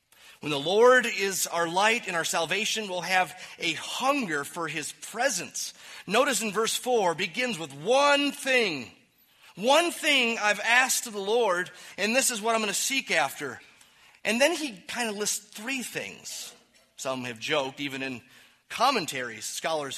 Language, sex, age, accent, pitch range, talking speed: English, male, 30-49, American, 165-230 Hz, 165 wpm